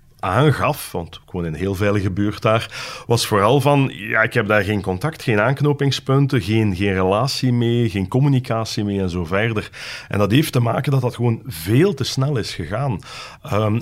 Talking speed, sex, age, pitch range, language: 190 wpm, male, 40-59, 95-125 Hz, Dutch